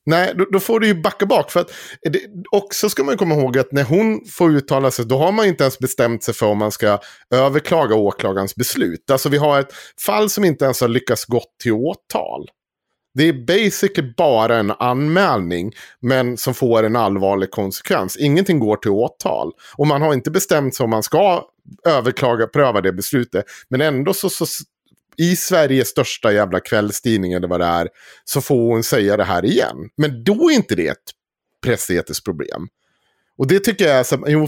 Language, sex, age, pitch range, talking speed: Swedish, male, 30-49, 115-170 Hz, 185 wpm